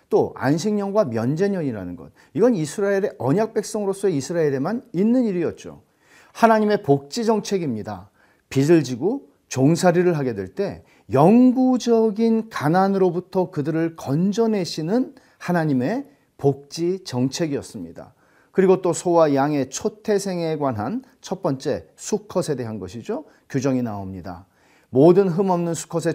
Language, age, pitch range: Korean, 40-59, 130-200 Hz